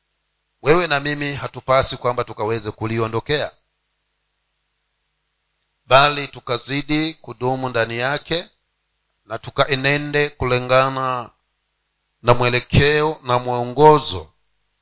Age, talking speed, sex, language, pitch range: 50-69, 75 wpm, male, Swahili, 120-150 Hz